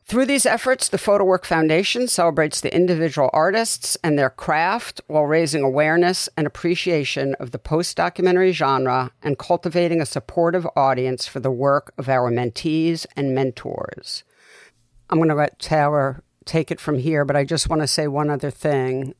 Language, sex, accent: English, female, American